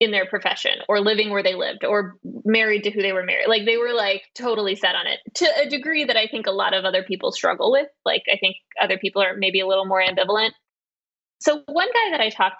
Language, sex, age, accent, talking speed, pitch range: English, female, 10-29, American, 250 wpm, 190-235 Hz